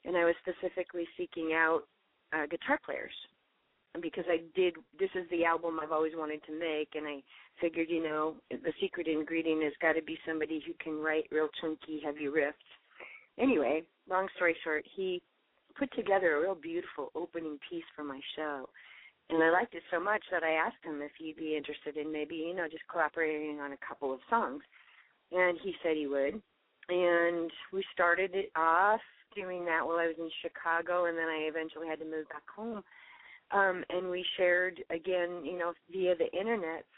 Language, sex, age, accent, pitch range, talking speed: English, female, 40-59, American, 155-190 Hz, 190 wpm